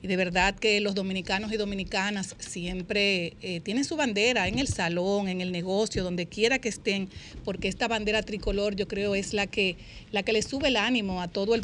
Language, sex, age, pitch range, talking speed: Spanish, female, 40-59, 185-220 Hz, 205 wpm